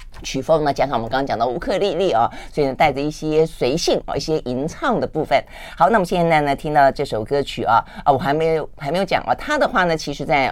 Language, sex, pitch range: Chinese, female, 130-180 Hz